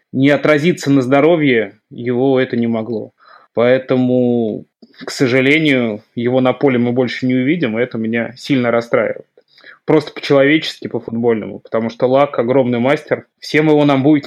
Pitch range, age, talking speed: 125-145 Hz, 20-39, 150 wpm